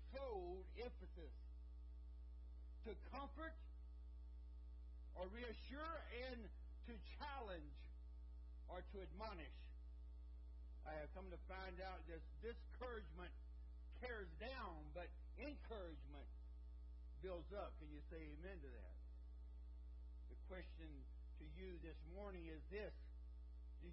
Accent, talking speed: American, 105 wpm